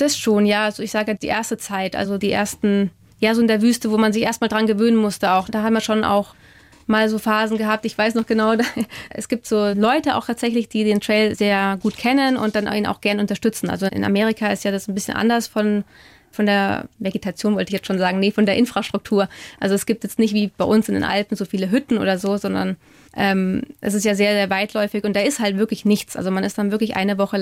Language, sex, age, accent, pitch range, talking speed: German, female, 20-39, German, 200-220 Hz, 255 wpm